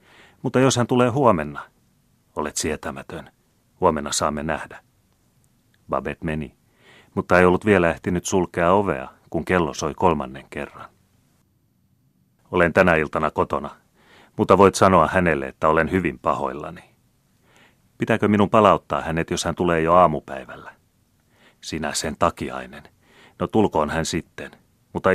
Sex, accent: male, native